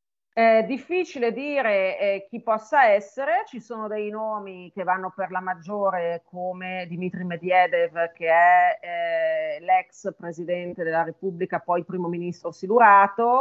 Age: 40-59